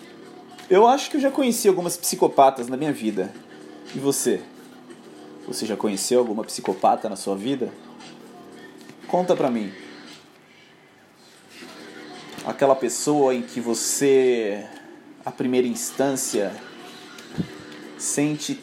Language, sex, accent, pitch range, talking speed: Portuguese, male, Brazilian, 120-170 Hz, 105 wpm